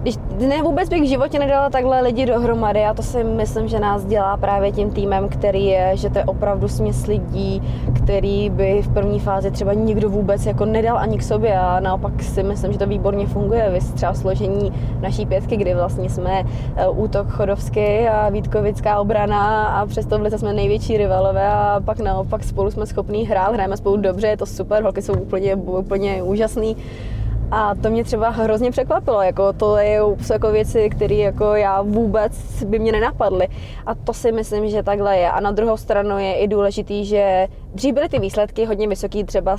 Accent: native